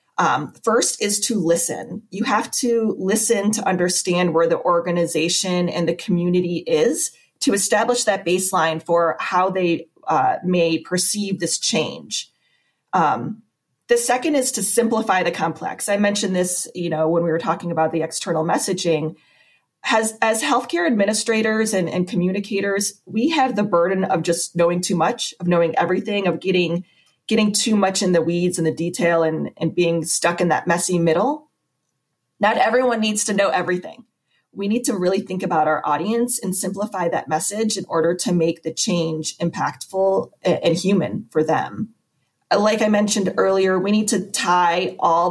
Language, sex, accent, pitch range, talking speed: English, female, American, 170-205 Hz, 165 wpm